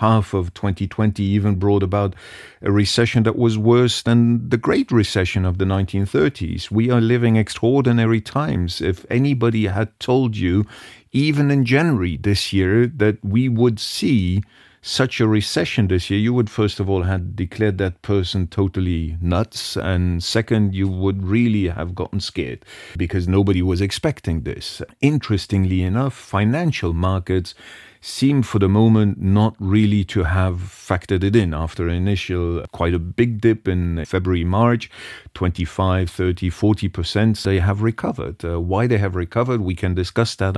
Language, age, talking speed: English, 40-59, 155 wpm